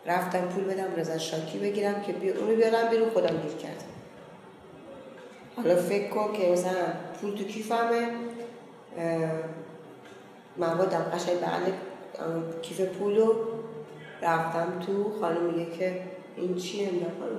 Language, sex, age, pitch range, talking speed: Persian, female, 30-49, 180-235 Hz, 130 wpm